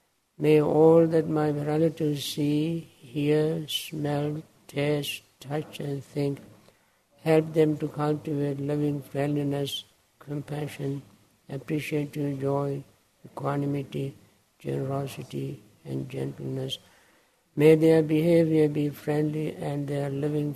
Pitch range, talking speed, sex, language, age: 140-150 Hz, 95 wpm, male, English, 60-79